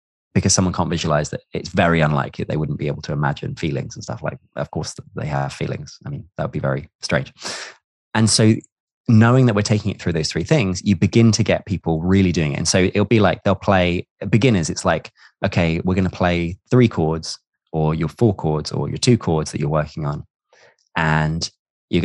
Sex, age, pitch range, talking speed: male, 20-39, 80-110 Hz, 220 wpm